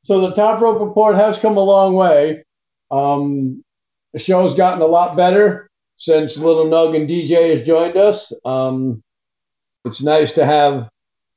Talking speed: 160 wpm